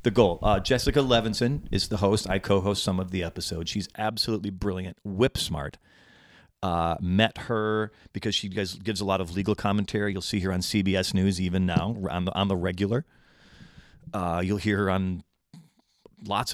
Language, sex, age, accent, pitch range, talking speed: English, male, 40-59, American, 90-105 Hz, 180 wpm